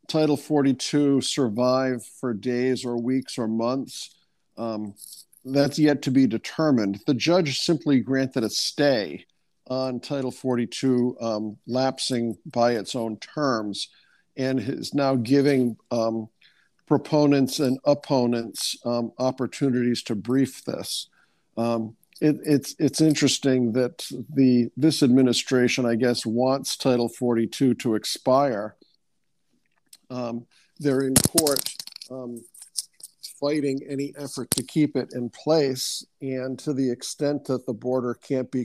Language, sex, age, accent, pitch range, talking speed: English, male, 50-69, American, 120-140 Hz, 125 wpm